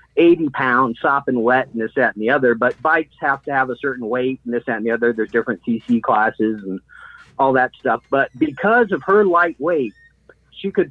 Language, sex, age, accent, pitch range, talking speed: English, male, 40-59, American, 120-175 Hz, 220 wpm